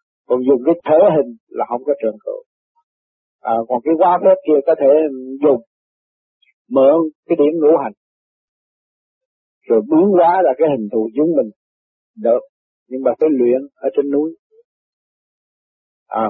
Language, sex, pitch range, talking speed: Vietnamese, male, 135-180 Hz, 155 wpm